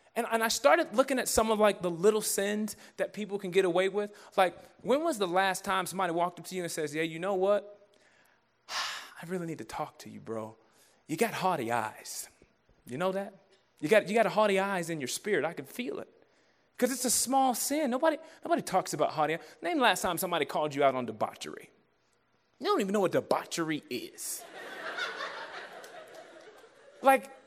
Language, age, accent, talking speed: English, 20-39, American, 205 wpm